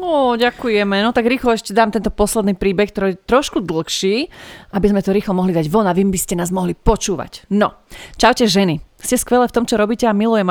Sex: female